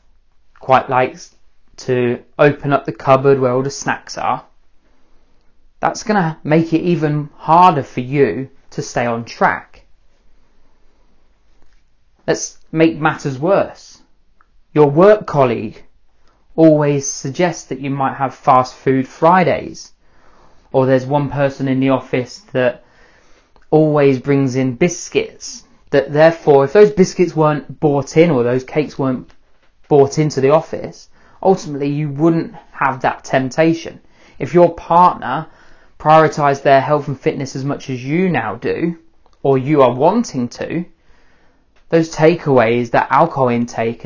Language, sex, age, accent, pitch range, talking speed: English, male, 20-39, British, 130-165 Hz, 135 wpm